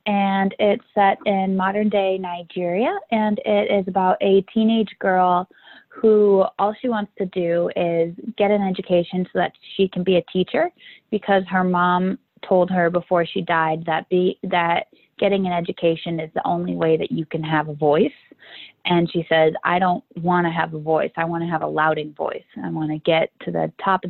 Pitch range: 170-195 Hz